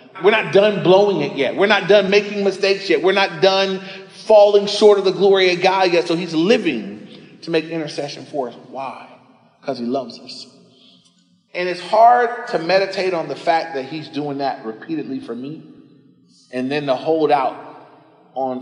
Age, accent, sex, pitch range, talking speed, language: 30-49, American, male, 135-195 Hz, 185 wpm, English